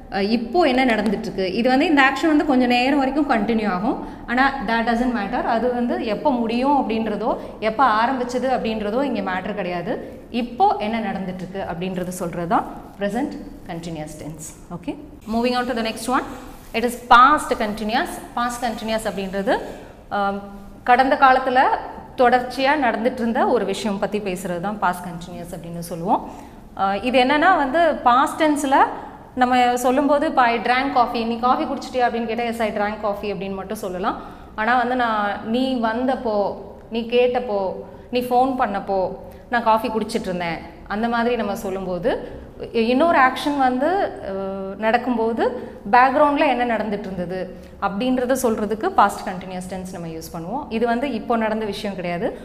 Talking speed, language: 140 wpm, Tamil